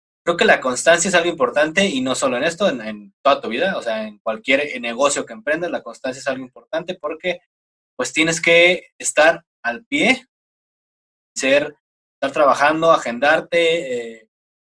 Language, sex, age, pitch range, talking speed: Spanish, male, 20-39, 130-200 Hz, 165 wpm